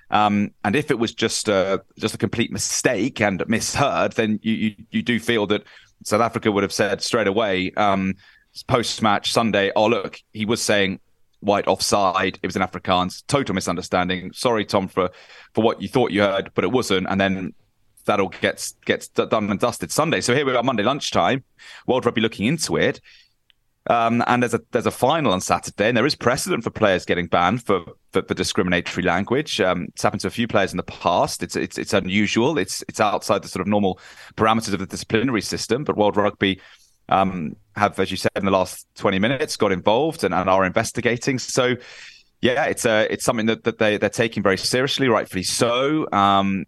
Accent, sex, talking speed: British, male, 205 wpm